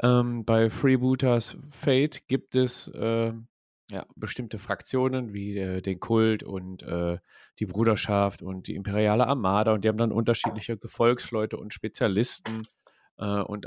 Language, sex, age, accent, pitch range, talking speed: German, male, 40-59, German, 105-120 Hz, 140 wpm